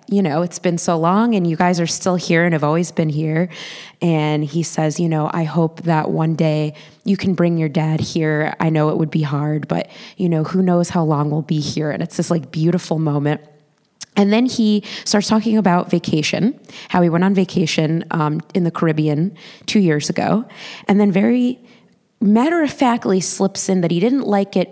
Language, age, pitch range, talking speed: English, 20-39, 165-225 Hz, 205 wpm